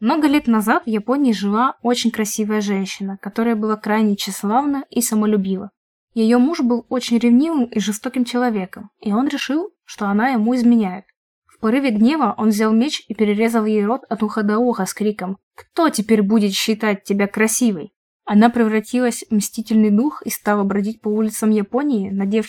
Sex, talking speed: female, 170 wpm